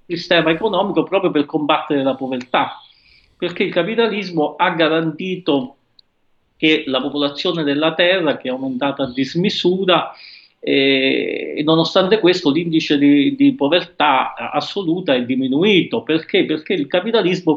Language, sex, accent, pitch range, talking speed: Italian, male, native, 140-230 Hz, 125 wpm